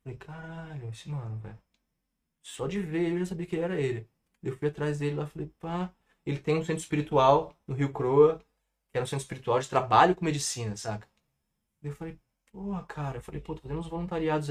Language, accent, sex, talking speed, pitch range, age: Portuguese, Brazilian, male, 205 wpm, 125-160 Hz, 20-39